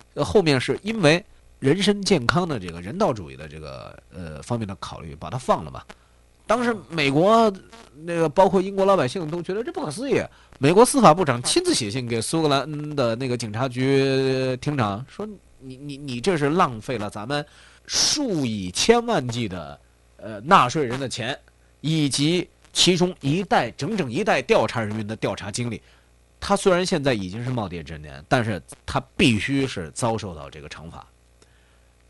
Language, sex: Chinese, male